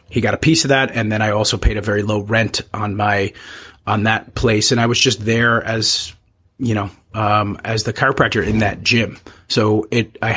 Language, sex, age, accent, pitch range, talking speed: English, male, 30-49, American, 105-120 Hz, 220 wpm